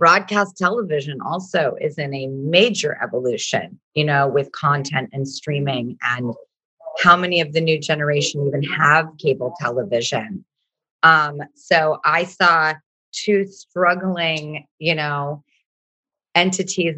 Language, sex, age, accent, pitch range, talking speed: English, female, 30-49, American, 145-175 Hz, 120 wpm